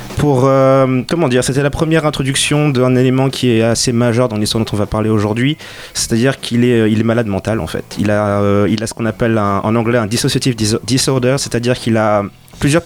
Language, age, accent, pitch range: French, 30-49, French, 110-135 Hz